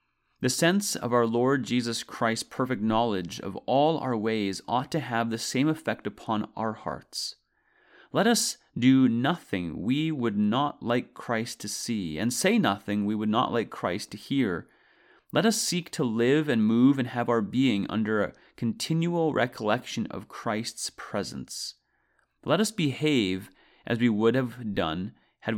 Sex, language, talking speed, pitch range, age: male, English, 165 wpm, 105-145 Hz, 30-49